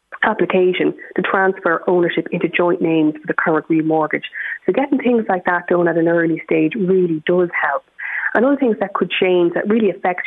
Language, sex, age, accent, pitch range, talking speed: English, female, 30-49, Irish, 165-195 Hz, 195 wpm